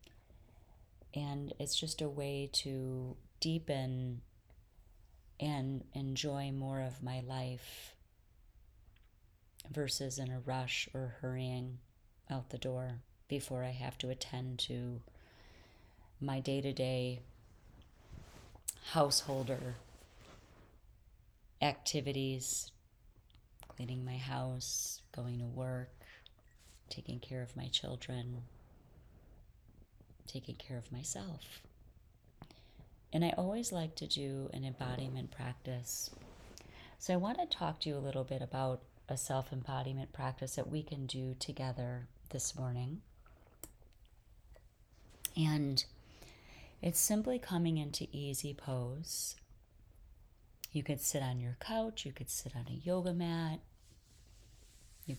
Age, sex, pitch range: 30-49, female, 115-140 Hz